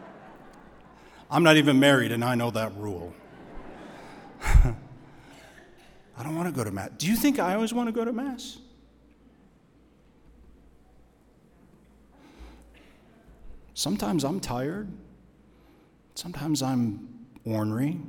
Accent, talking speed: American, 105 wpm